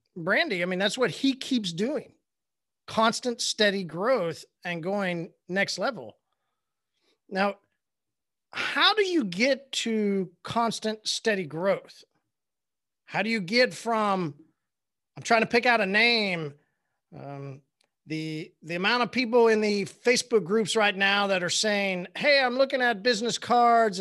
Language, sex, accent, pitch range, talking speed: English, male, American, 190-245 Hz, 140 wpm